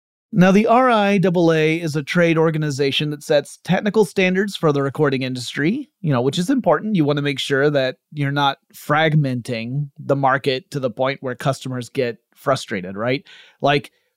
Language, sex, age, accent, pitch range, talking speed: English, male, 30-49, American, 135-165 Hz, 170 wpm